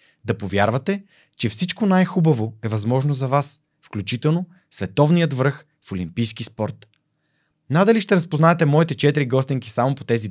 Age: 30-49